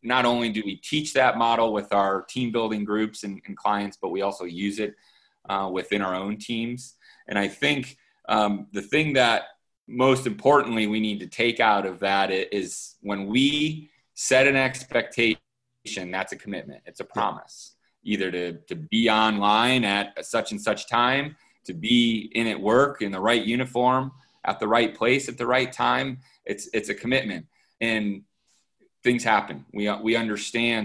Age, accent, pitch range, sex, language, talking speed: 30-49, American, 95-120 Hz, male, English, 175 wpm